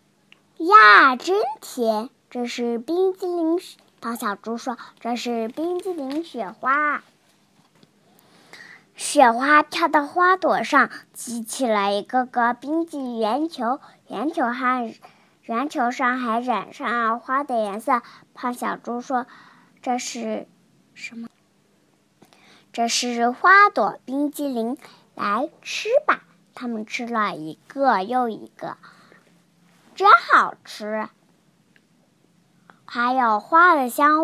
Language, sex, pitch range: Chinese, male, 220-295 Hz